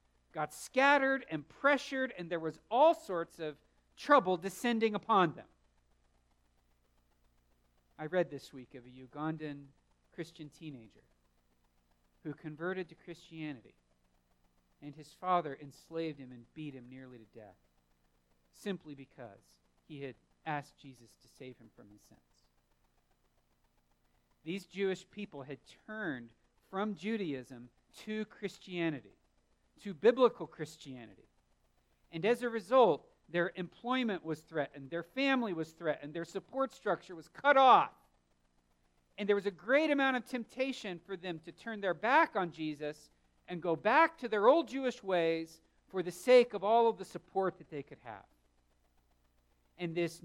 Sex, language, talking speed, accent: male, English, 140 wpm, American